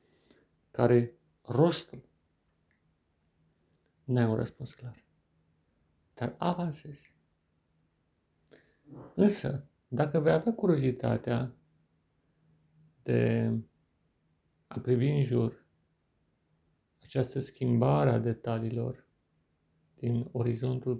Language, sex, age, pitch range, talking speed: Romanian, male, 50-69, 115-140 Hz, 70 wpm